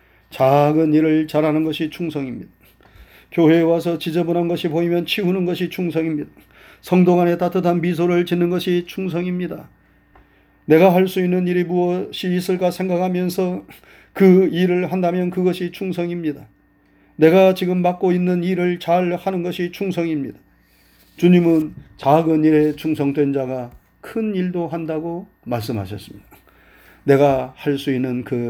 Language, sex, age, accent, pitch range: Korean, male, 40-59, native, 135-180 Hz